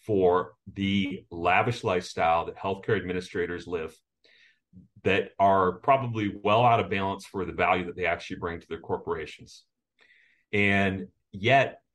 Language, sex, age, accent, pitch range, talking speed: English, male, 30-49, American, 90-110 Hz, 135 wpm